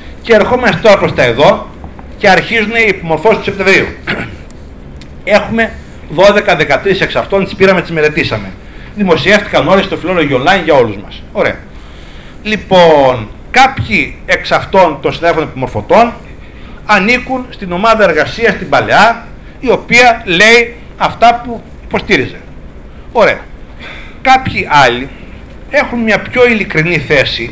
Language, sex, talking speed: Greek, male, 125 wpm